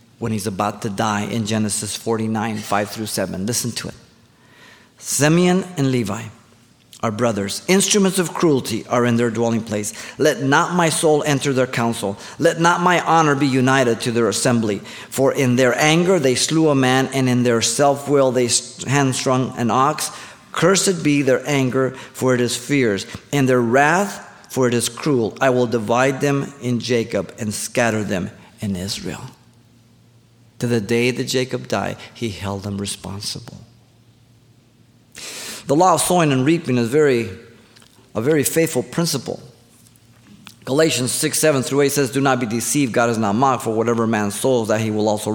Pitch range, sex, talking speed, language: 115-135 Hz, male, 170 wpm, English